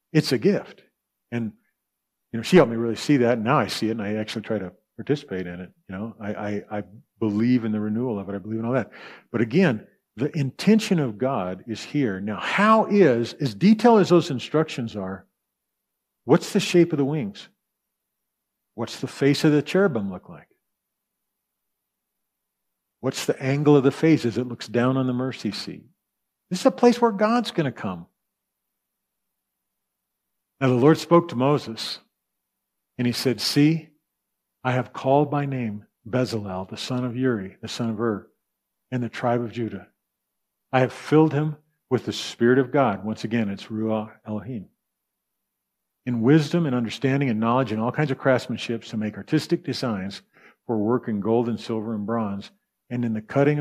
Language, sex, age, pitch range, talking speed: English, male, 50-69, 110-150 Hz, 185 wpm